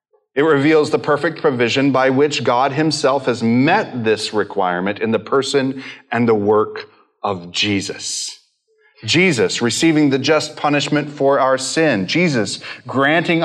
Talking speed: 140 wpm